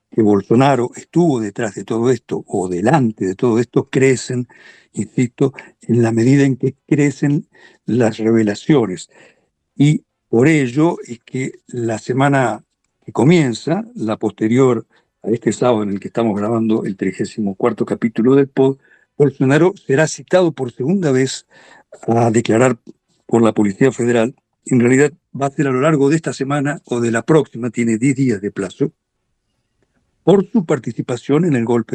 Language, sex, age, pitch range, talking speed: Spanish, male, 60-79, 115-150 Hz, 160 wpm